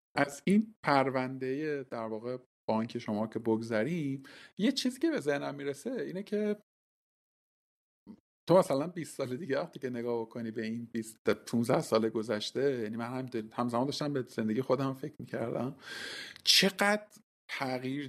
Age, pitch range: 50-69, 115-140 Hz